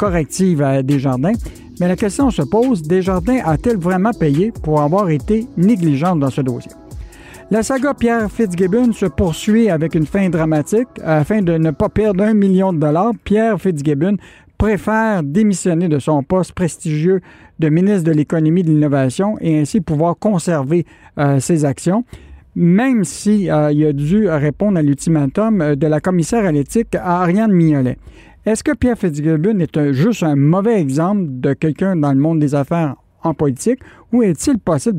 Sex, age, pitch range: male, 60-79, 155-210 Hz